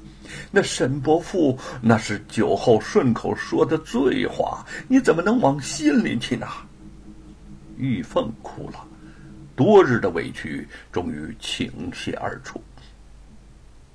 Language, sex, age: Chinese, male, 60-79